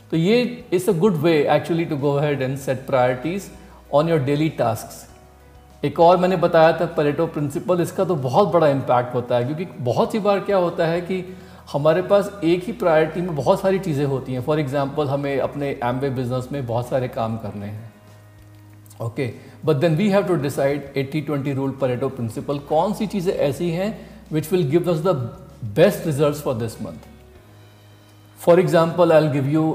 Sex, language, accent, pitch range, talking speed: male, Hindi, native, 125-165 Hz, 195 wpm